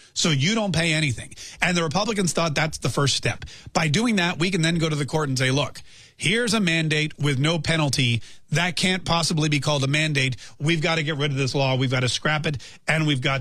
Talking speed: 245 wpm